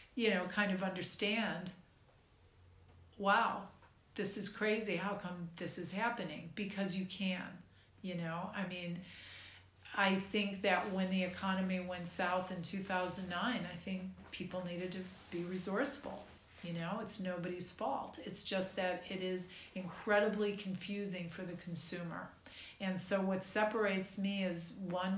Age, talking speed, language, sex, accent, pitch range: 50-69, 145 wpm, English, female, American, 175-200 Hz